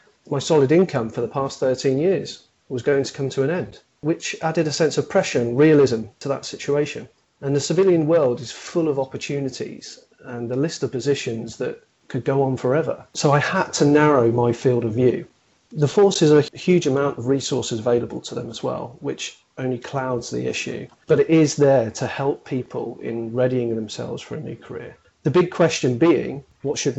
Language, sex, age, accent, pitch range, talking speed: English, male, 40-59, British, 125-155 Hz, 200 wpm